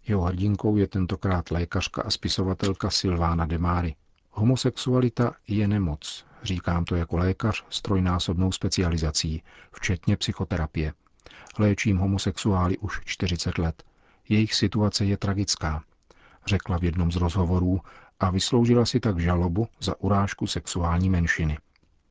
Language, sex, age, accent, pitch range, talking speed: Czech, male, 40-59, native, 85-100 Hz, 120 wpm